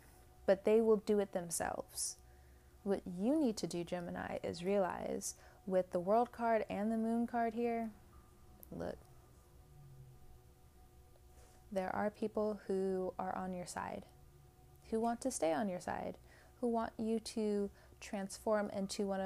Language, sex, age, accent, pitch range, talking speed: English, female, 20-39, American, 180-220 Hz, 145 wpm